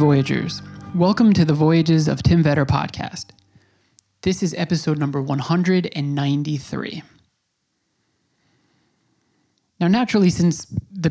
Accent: American